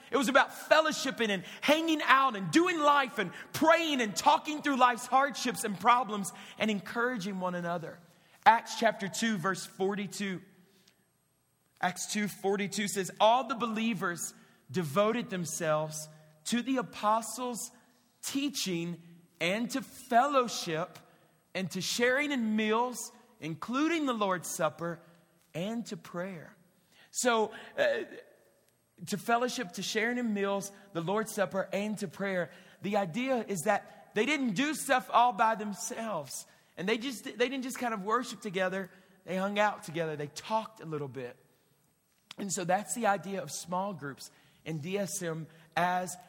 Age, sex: 40-59, male